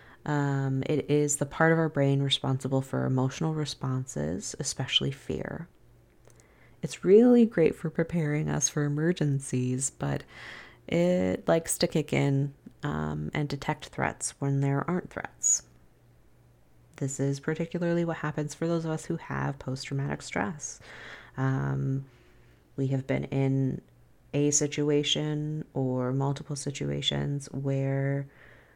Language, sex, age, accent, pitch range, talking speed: English, female, 30-49, American, 130-150 Hz, 125 wpm